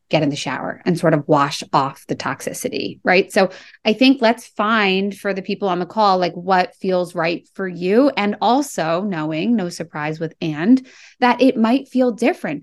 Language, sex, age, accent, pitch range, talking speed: English, female, 30-49, American, 170-230 Hz, 195 wpm